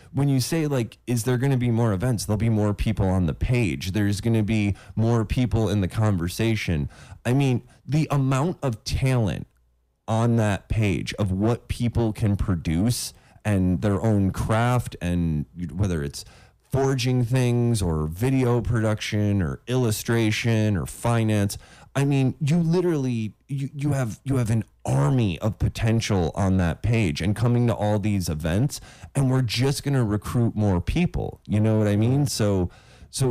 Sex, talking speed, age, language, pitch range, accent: male, 170 wpm, 20-39, English, 100-125 Hz, American